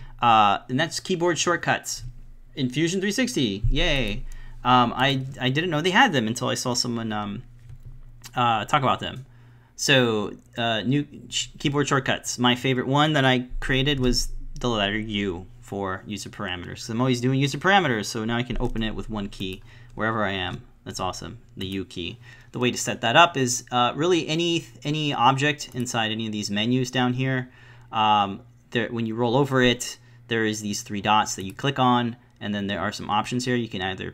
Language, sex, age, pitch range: English, male, 30-49, 115-130 Hz